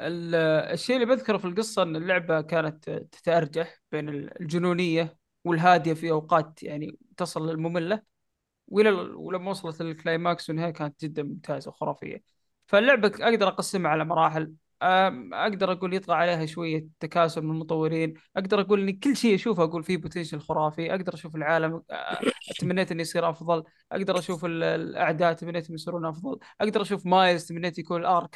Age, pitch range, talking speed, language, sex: 20-39, 165-200 Hz, 140 wpm, Arabic, male